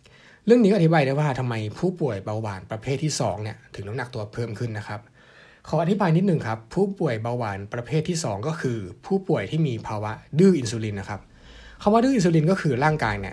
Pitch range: 110-155 Hz